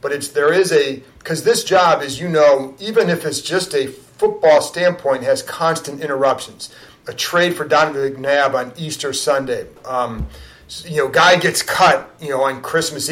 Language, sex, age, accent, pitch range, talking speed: English, male, 40-59, American, 135-170 Hz, 180 wpm